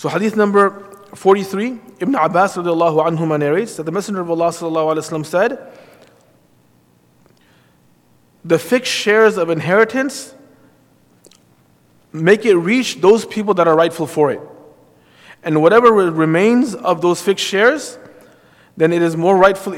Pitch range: 150-195 Hz